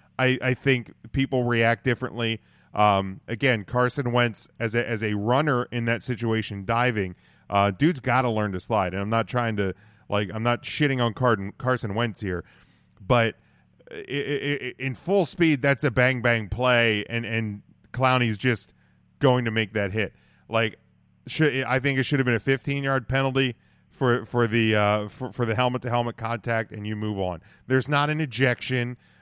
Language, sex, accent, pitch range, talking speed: English, male, American, 110-135 Hz, 185 wpm